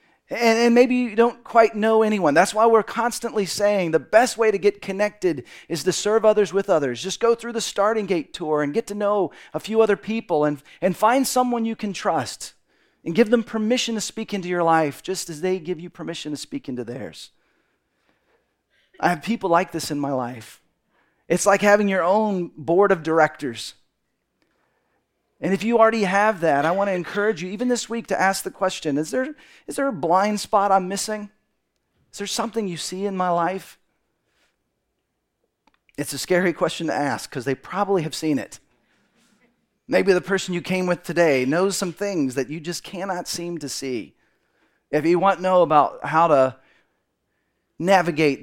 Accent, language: American, English